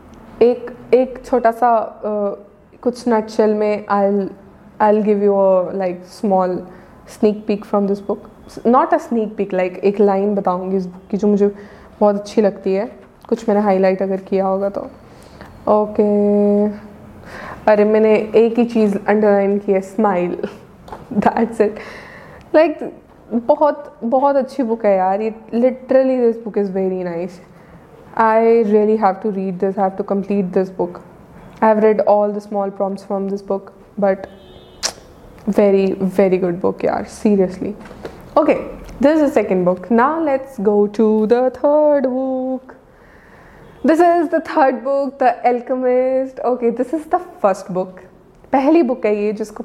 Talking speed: 160 wpm